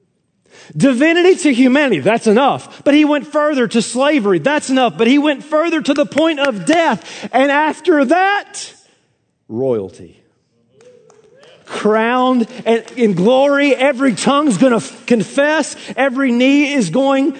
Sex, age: male, 40-59